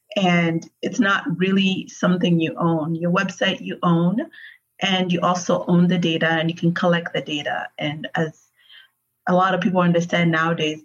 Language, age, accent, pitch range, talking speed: English, 30-49, American, 165-190 Hz, 170 wpm